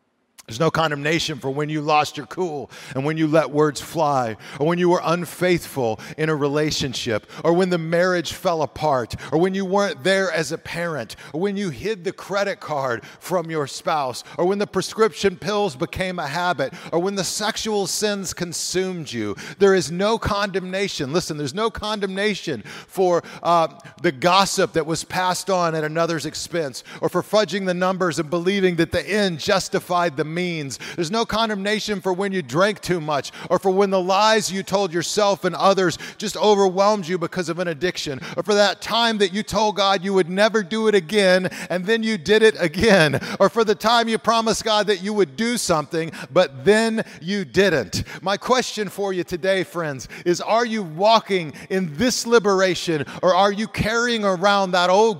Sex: male